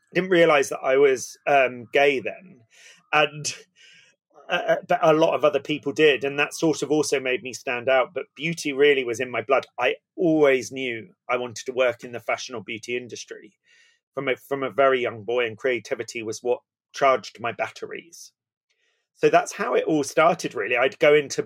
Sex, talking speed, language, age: male, 195 wpm, English, 30-49